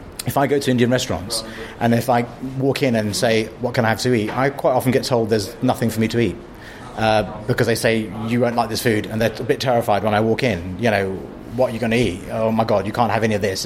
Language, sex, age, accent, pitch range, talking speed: English, male, 30-49, British, 105-130 Hz, 285 wpm